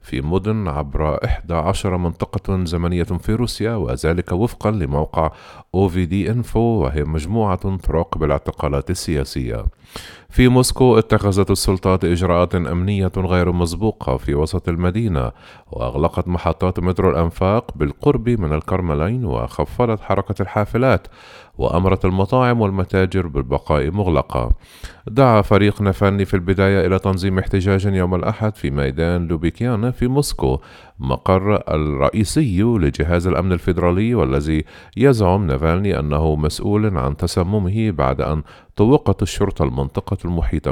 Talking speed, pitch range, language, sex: 115 wpm, 80-110 Hz, Arabic, male